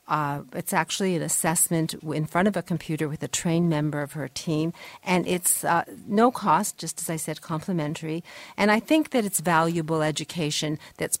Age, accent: 50-69, American